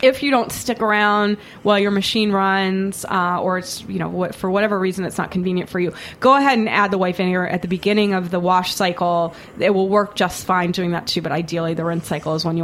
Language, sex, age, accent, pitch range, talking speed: English, female, 20-39, American, 180-210 Hz, 250 wpm